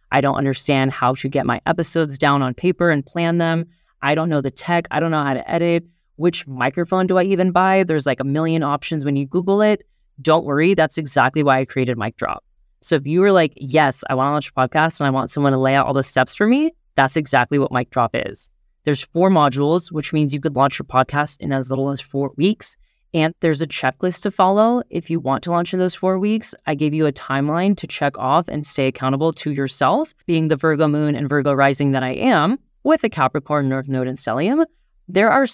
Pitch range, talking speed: 140-175 Hz, 235 wpm